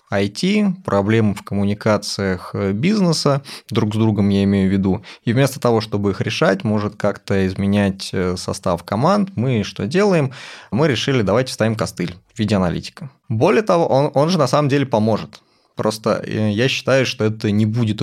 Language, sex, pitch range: Russian, male, 100-130 Hz